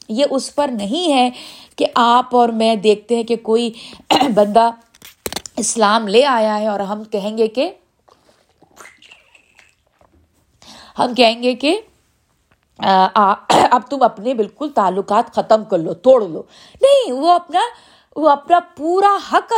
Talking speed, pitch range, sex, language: 140 wpm, 210-270 Hz, female, Urdu